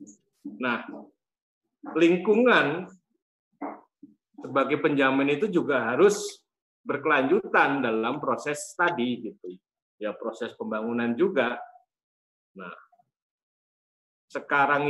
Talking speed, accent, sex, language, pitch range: 75 wpm, native, male, Indonesian, 120-160 Hz